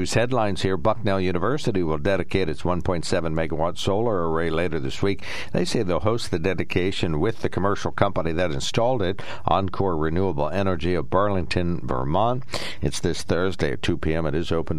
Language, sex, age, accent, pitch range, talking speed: English, male, 60-79, American, 75-100 Hz, 165 wpm